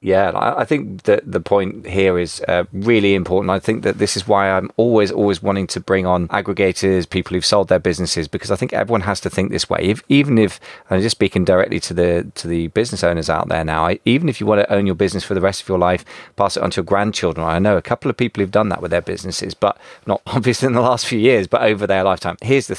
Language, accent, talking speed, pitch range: English, British, 270 wpm, 90-110 Hz